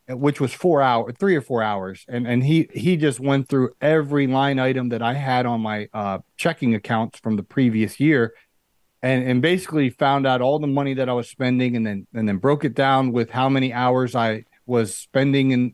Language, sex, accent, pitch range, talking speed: English, male, American, 120-155 Hz, 215 wpm